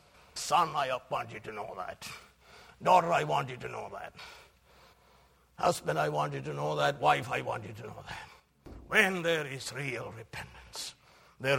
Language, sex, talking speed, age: English, male, 175 wpm, 60-79